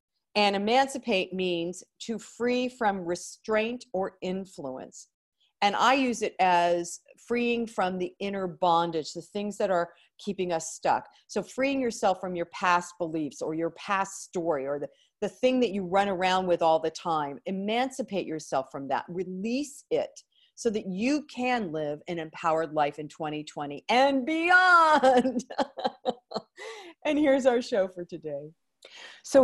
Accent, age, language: American, 40-59, English